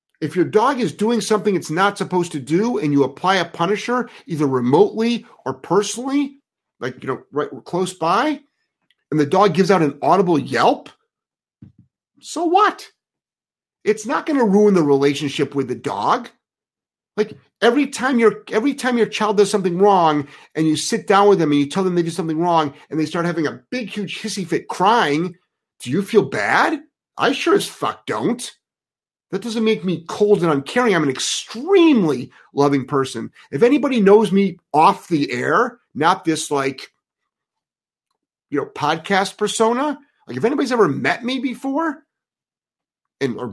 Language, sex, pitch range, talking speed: English, male, 160-240 Hz, 170 wpm